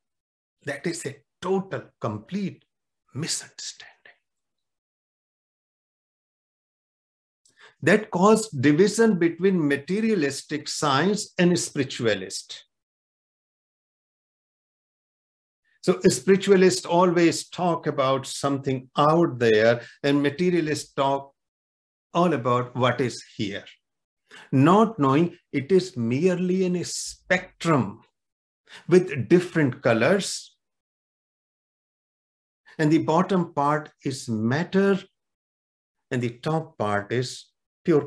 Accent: Indian